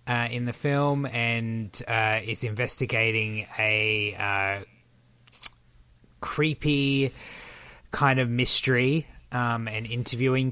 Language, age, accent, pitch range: English, 20-39, Australian, 110-130 Hz